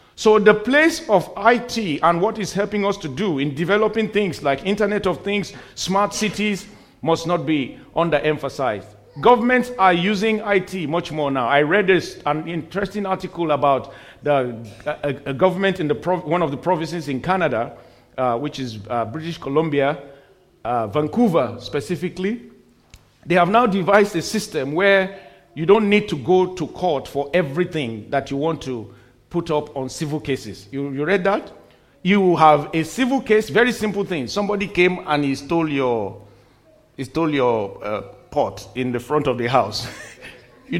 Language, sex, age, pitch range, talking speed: English, male, 50-69, 145-195 Hz, 170 wpm